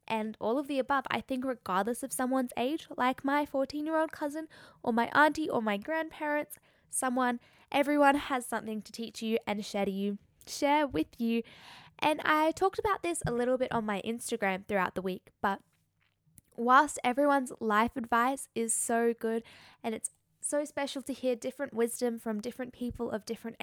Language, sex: English, female